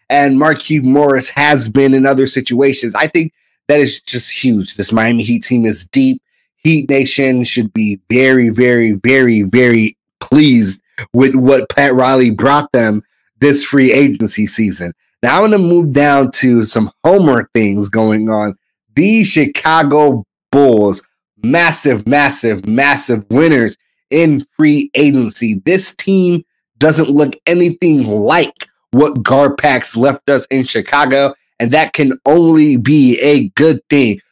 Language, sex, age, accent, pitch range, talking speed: English, male, 30-49, American, 125-150 Hz, 145 wpm